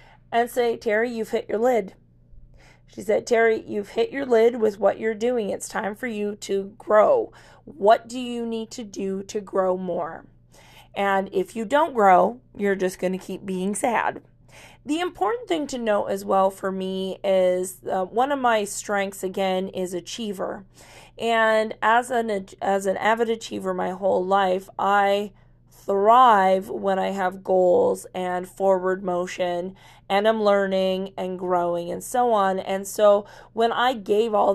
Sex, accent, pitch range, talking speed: female, American, 185-220 Hz, 165 wpm